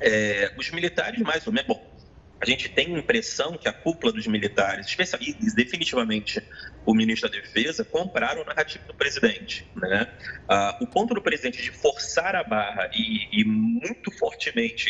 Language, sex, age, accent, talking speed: Portuguese, male, 30-49, Brazilian, 165 wpm